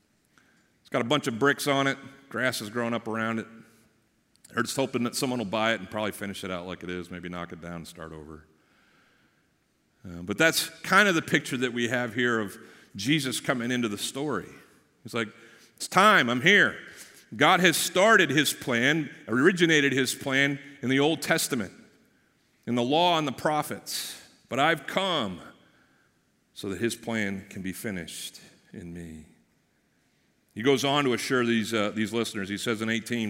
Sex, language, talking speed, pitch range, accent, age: male, English, 185 wpm, 100-135 Hz, American, 40-59